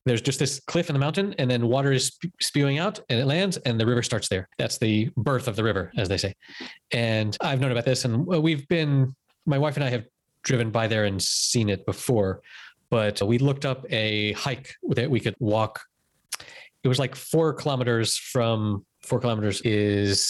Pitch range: 105-135 Hz